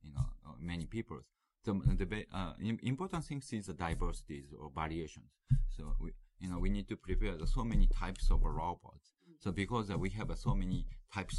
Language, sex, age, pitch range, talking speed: English, male, 30-49, 75-95 Hz, 180 wpm